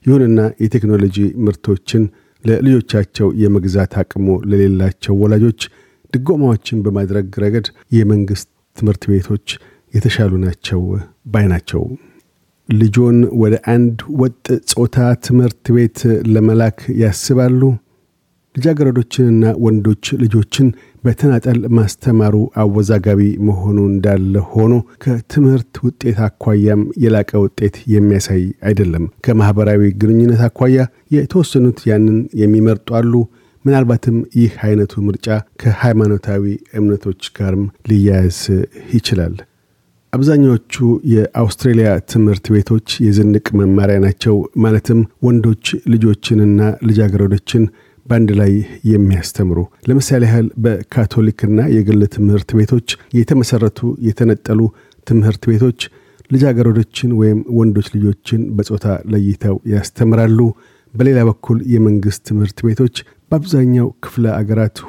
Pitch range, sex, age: 100-120 Hz, male, 50-69